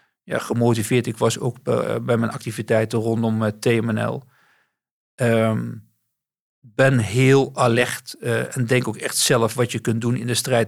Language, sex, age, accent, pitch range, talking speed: Dutch, male, 50-69, Dutch, 115-130 Hz, 140 wpm